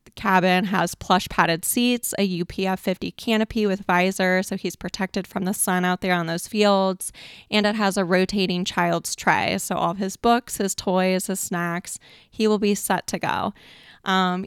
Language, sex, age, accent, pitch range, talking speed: English, female, 20-39, American, 185-210 Hz, 180 wpm